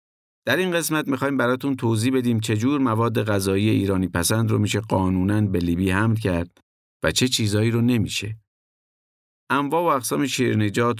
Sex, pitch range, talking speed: male, 95-120 Hz, 160 wpm